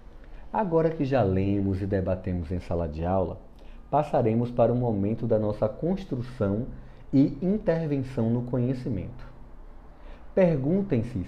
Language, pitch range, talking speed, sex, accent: Portuguese, 95-125 Hz, 115 wpm, male, Brazilian